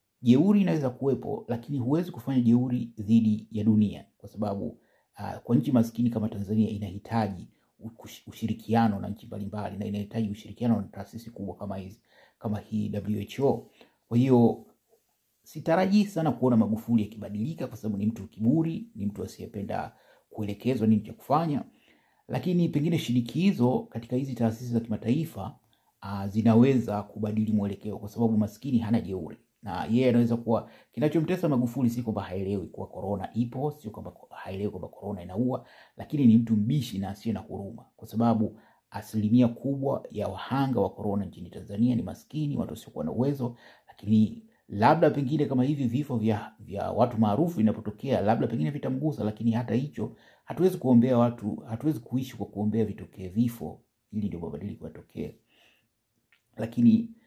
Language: Swahili